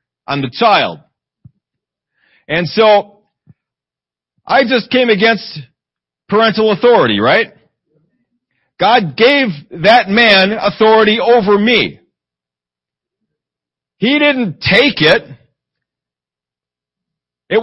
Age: 50-69